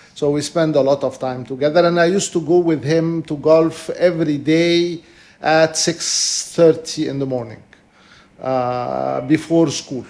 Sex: male